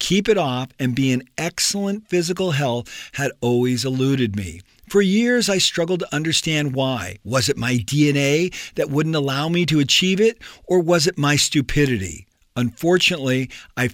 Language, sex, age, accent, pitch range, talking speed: English, male, 50-69, American, 130-170 Hz, 165 wpm